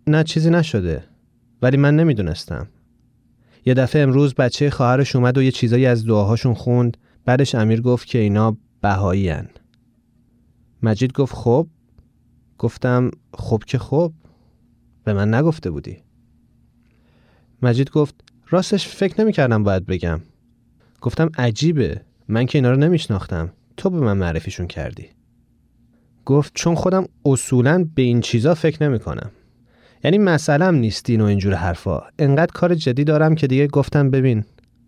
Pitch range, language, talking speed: 110-145 Hz, Persian, 135 wpm